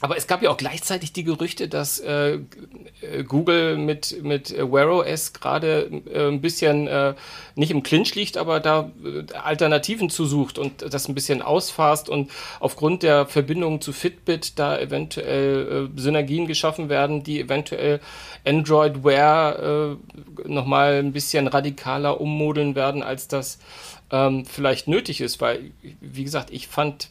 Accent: German